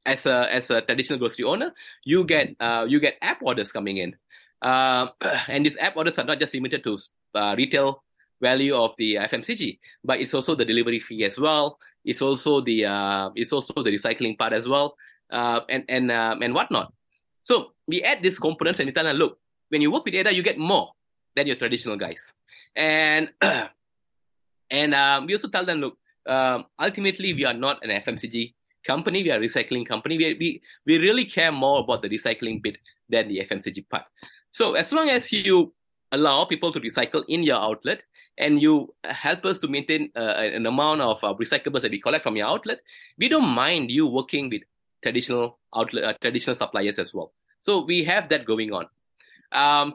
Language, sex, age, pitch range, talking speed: English, male, 20-39, 120-185 Hz, 195 wpm